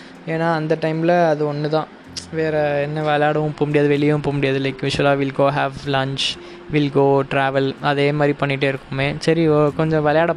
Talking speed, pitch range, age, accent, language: 180 wpm, 140-165 Hz, 20-39, native, Tamil